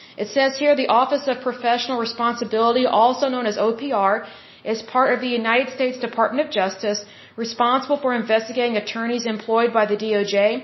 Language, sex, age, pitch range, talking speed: Hindi, female, 40-59, 220-255 Hz, 165 wpm